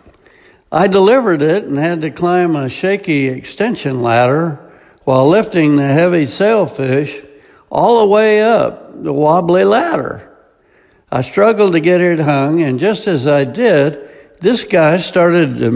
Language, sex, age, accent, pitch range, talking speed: English, male, 60-79, American, 140-185 Hz, 145 wpm